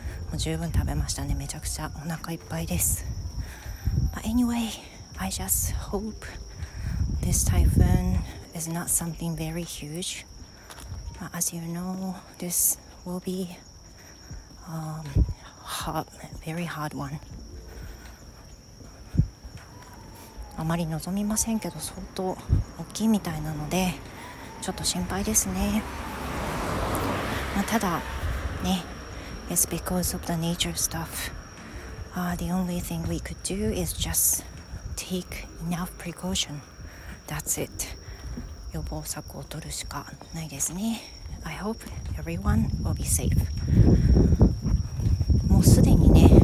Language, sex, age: Japanese, female, 40-59